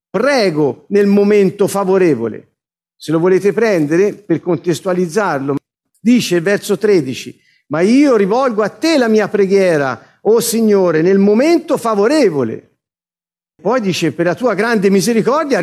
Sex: male